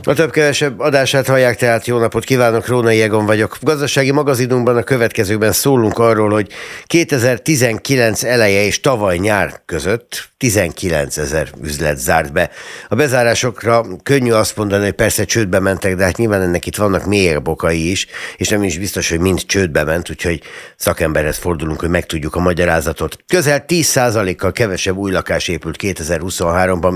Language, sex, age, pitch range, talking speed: Hungarian, male, 60-79, 90-115 Hz, 155 wpm